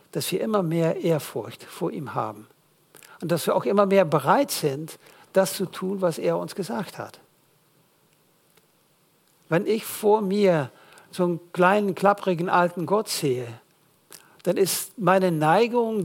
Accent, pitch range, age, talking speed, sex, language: German, 165-200 Hz, 60-79, 145 wpm, male, Dutch